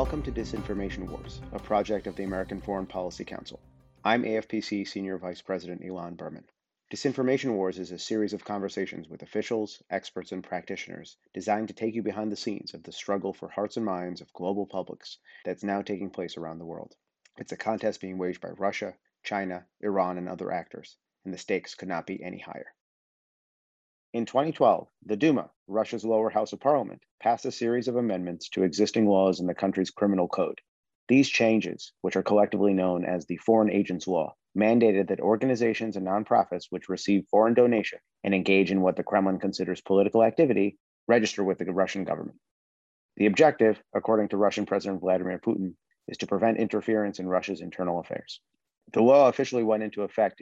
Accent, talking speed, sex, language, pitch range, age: American, 180 wpm, male, English, 95-110 Hz, 40-59